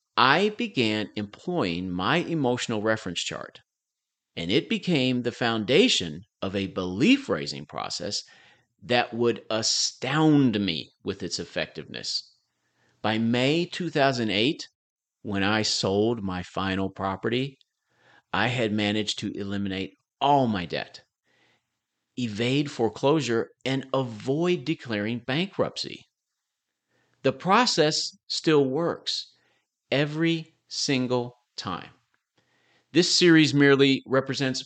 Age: 40-59